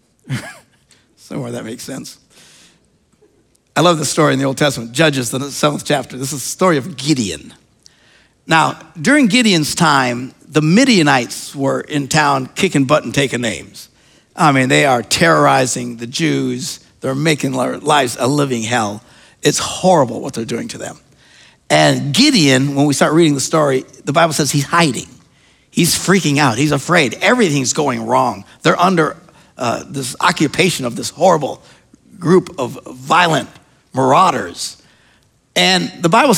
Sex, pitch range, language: male, 135-195 Hz, English